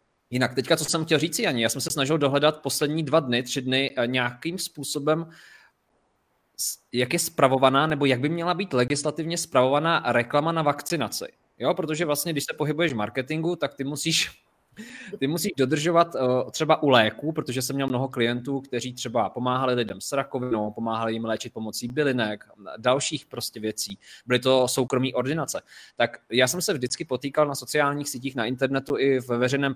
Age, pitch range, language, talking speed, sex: 20-39, 125-155 Hz, Czech, 170 wpm, male